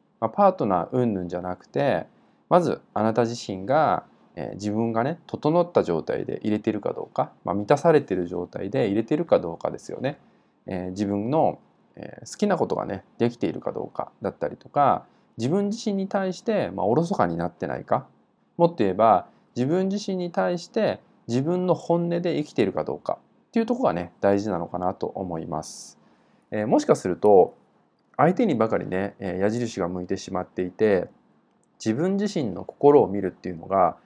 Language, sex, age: Japanese, male, 20-39